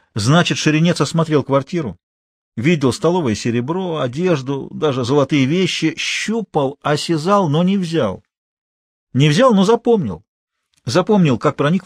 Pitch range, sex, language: 130-175 Hz, male, Russian